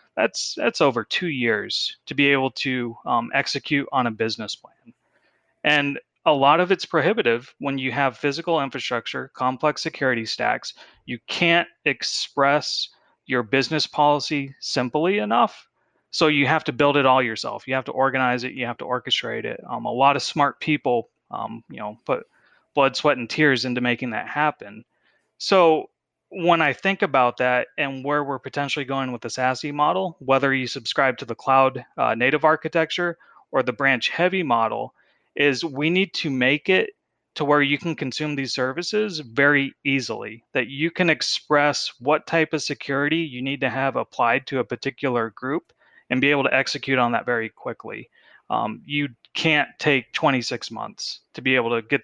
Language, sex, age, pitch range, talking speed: English, male, 30-49, 125-150 Hz, 180 wpm